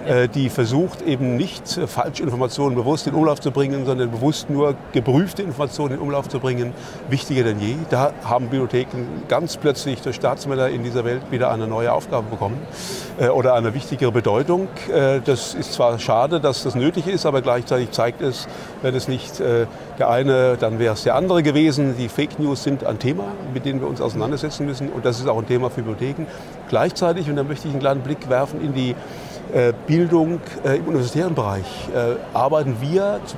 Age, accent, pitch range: 50-69, German, 125-150 Hz